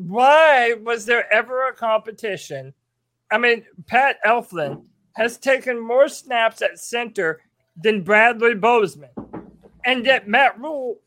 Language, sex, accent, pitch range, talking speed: English, male, American, 190-250 Hz, 125 wpm